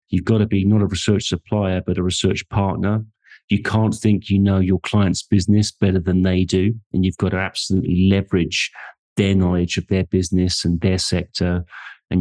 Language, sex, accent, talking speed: English, male, British, 190 wpm